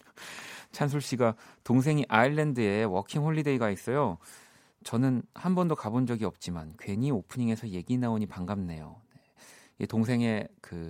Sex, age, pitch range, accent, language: male, 30-49, 95-135 Hz, native, Korean